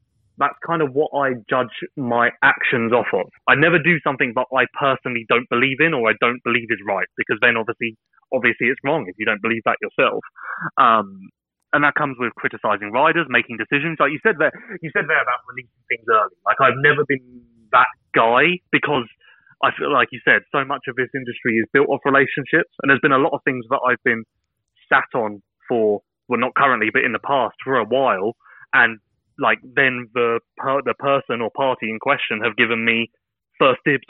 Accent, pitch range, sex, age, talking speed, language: British, 120-150 Hz, male, 20-39, 210 wpm, English